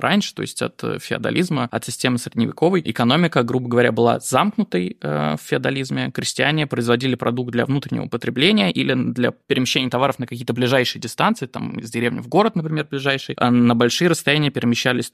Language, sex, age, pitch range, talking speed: Russian, male, 20-39, 120-155 Hz, 160 wpm